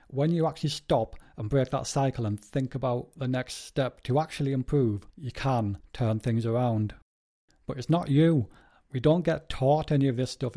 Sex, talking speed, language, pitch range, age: male, 195 wpm, English, 120-145 Hz, 40-59